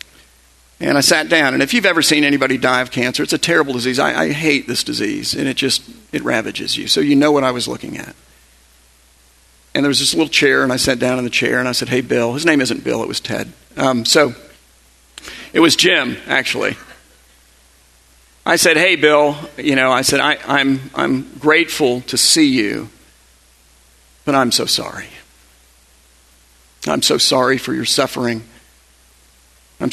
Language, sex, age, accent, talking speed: English, male, 50-69, American, 185 wpm